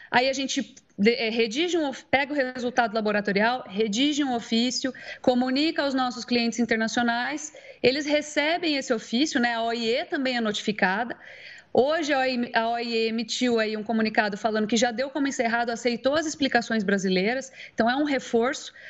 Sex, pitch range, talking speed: female, 220-265 Hz, 145 wpm